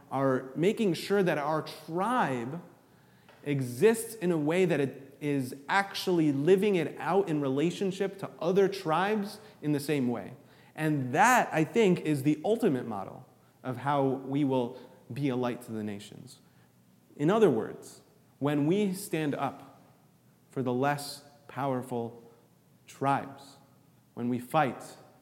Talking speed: 140 wpm